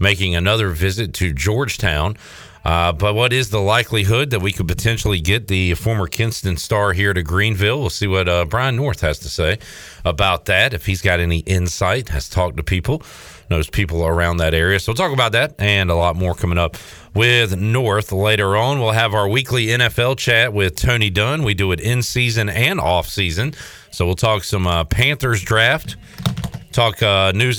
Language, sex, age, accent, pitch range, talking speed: English, male, 40-59, American, 90-115 Hz, 190 wpm